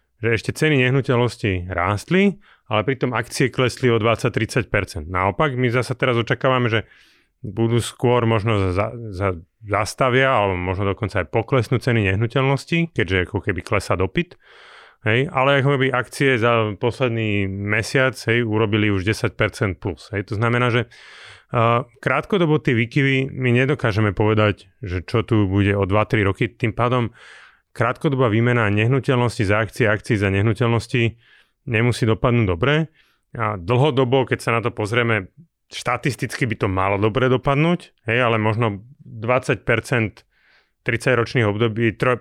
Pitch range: 105-130 Hz